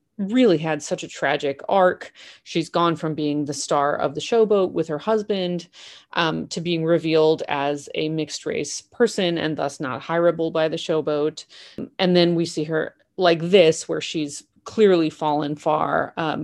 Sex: female